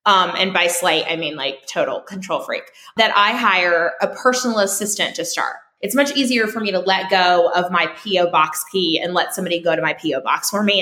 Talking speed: 225 wpm